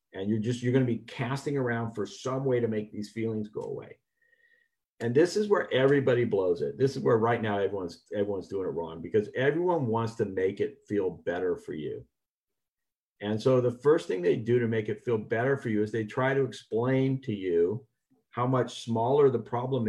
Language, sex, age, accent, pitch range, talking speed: English, male, 50-69, American, 115-155 Hz, 215 wpm